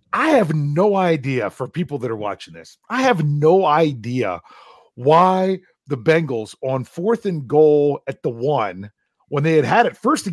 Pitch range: 125-170 Hz